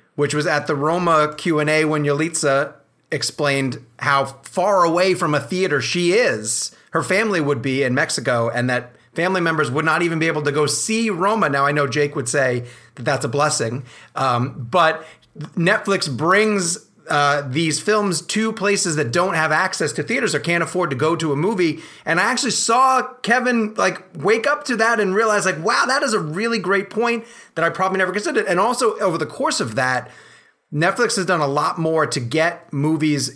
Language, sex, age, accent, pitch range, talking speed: English, male, 30-49, American, 130-180 Hz, 200 wpm